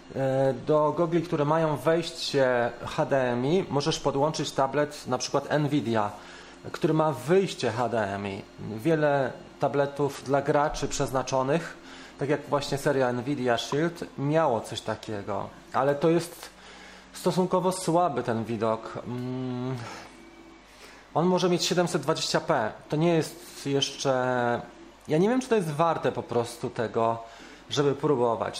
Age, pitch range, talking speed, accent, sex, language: 30-49, 125-165 Hz, 120 wpm, native, male, Polish